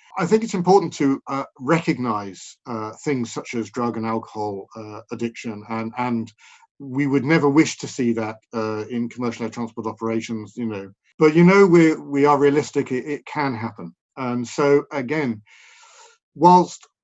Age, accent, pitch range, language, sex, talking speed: 50-69, British, 115-150 Hz, English, male, 170 wpm